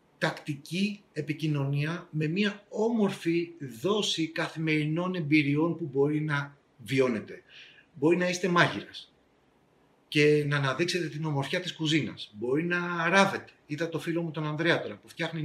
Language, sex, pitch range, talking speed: Greek, male, 150-180 Hz, 135 wpm